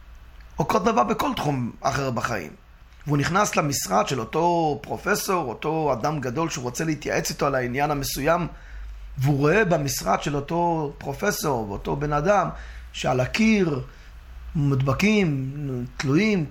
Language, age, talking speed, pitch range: English, 30-49, 125 wpm, 125-170 Hz